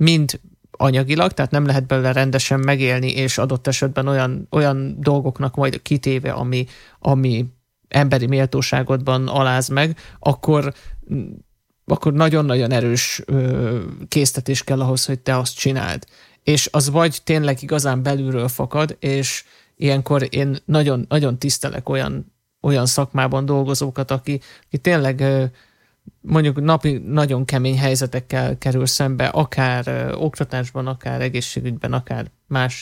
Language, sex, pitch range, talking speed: Hungarian, male, 125-145 Hz, 120 wpm